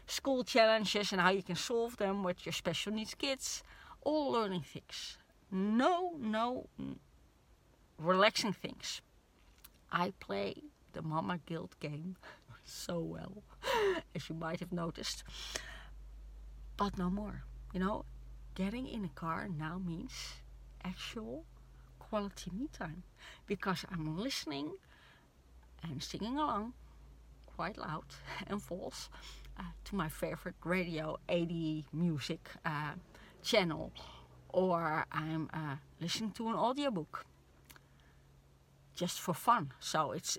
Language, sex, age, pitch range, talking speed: English, female, 40-59, 155-210 Hz, 115 wpm